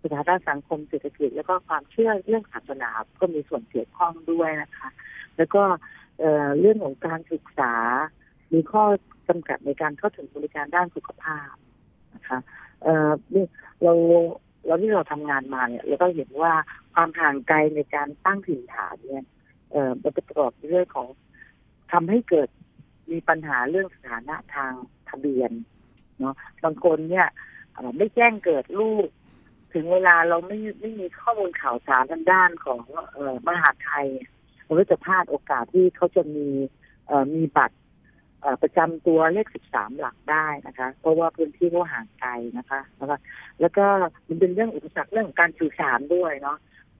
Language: Thai